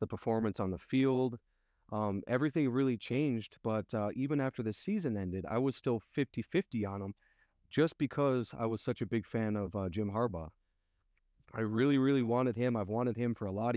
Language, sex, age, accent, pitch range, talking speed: English, male, 30-49, American, 100-120 Hz, 195 wpm